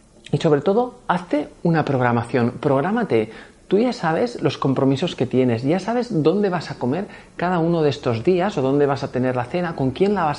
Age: 40-59